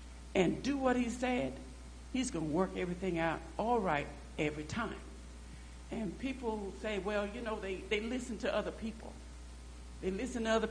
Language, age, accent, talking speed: English, 60-79, American, 170 wpm